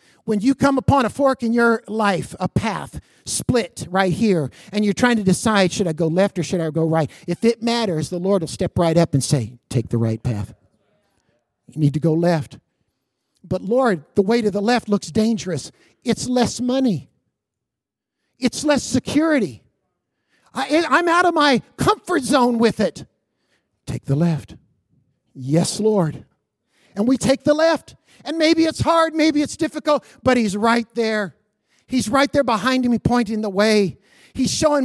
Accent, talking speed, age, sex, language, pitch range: American, 175 wpm, 50-69, male, English, 170-255 Hz